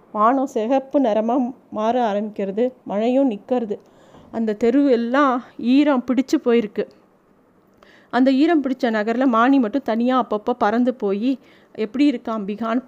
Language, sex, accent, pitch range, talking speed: Tamil, female, native, 220-260 Hz, 115 wpm